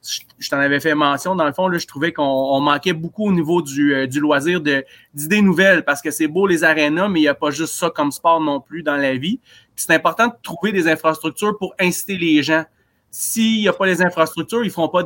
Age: 30-49